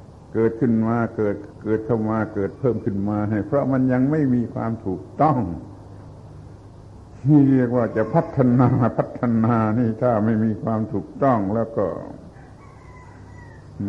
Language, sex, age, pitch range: Thai, male, 70-89, 95-125 Hz